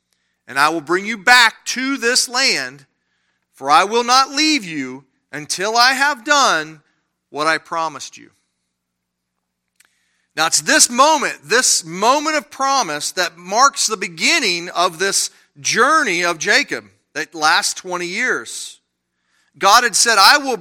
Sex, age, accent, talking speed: male, 40-59, American, 145 wpm